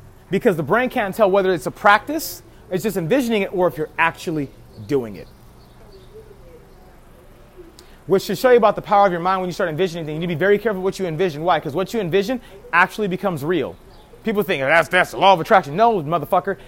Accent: American